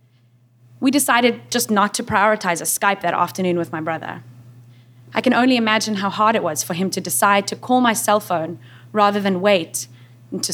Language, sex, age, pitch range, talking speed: English, female, 20-39, 170-235 Hz, 195 wpm